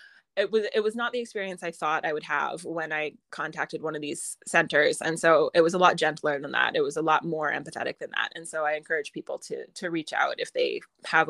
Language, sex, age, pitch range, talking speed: English, female, 20-39, 175-225 Hz, 255 wpm